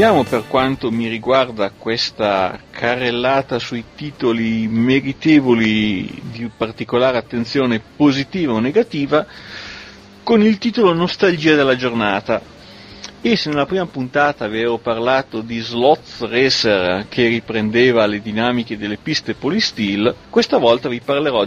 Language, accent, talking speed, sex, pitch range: Italian, native, 115 wpm, male, 115-150 Hz